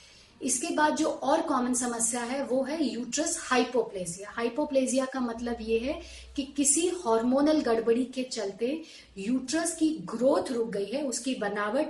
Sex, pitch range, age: female, 230-285 Hz, 30-49